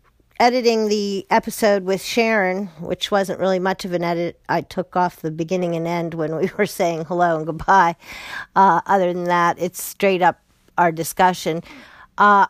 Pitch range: 165-200 Hz